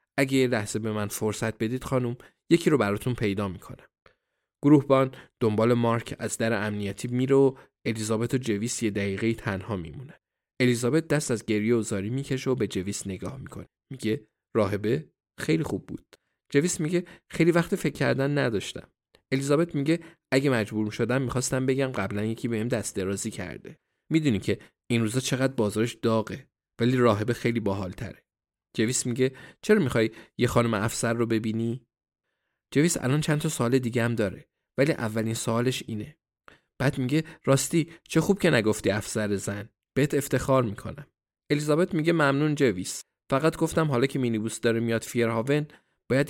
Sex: male